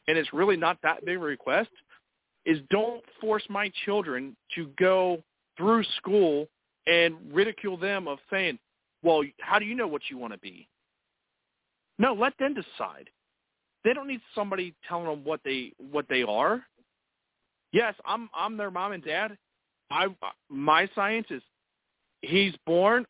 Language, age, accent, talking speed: English, 40-59, American, 150 wpm